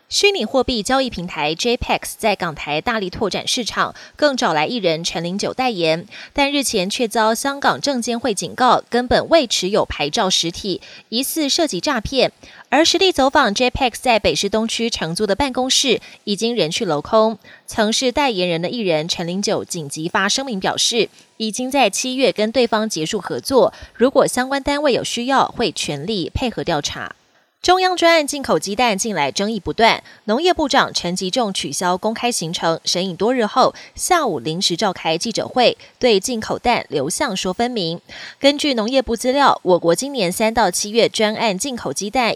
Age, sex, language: 20-39, female, Chinese